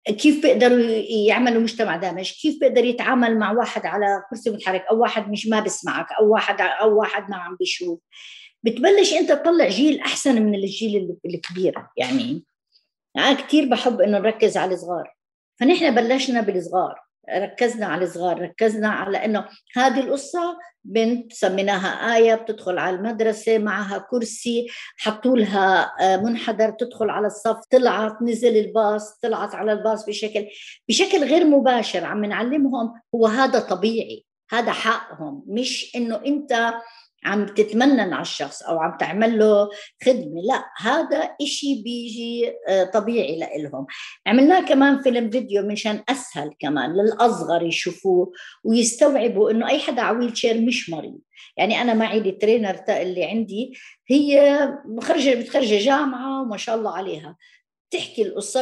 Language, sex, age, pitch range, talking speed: Arabic, female, 50-69, 210-265 Hz, 135 wpm